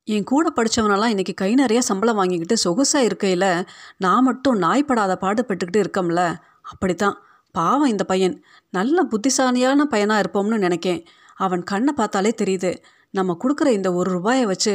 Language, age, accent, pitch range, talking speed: Tamil, 30-49, native, 185-240 Hz, 140 wpm